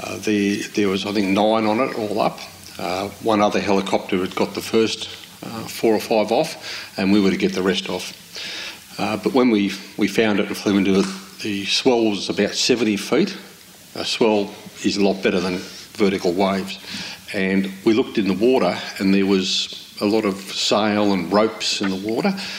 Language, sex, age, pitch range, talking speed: English, male, 50-69, 95-110 Hz, 200 wpm